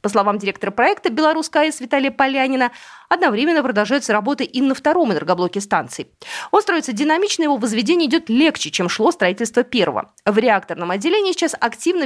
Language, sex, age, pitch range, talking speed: Russian, female, 20-39, 200-310 Hz, 155 wpm